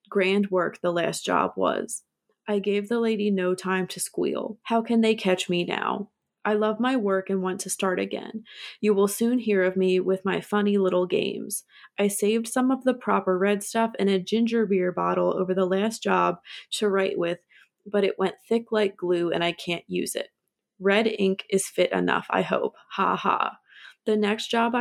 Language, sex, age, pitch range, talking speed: English, female, 20-39, 185-215 Hz, 200 wpm